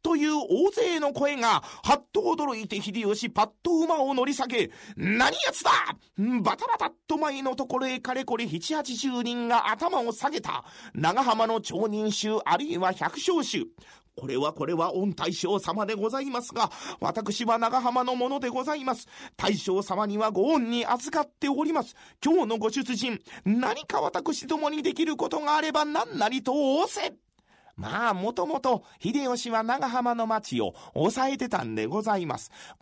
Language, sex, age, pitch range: Japanese, male, 40-59, 210-295 Hz